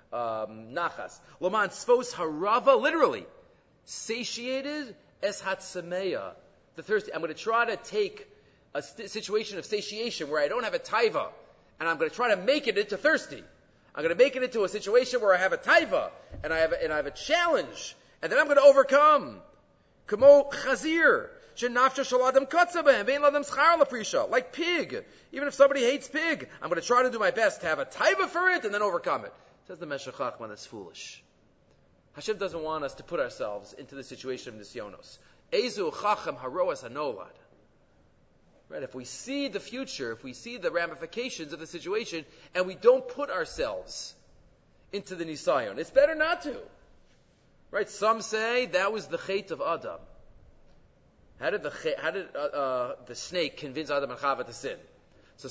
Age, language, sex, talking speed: 40-59, English, male, 175 wpm